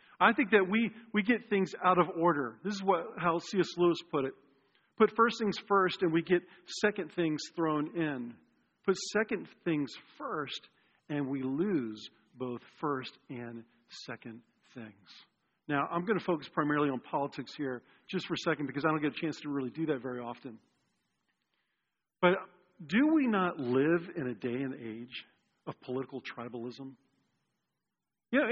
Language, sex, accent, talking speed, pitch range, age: English, male, American, 170 wpm, 145-195 Hz, 40-59